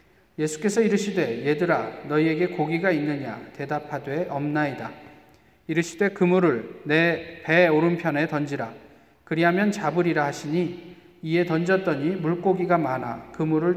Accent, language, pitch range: native, Korean, 150-190 Hz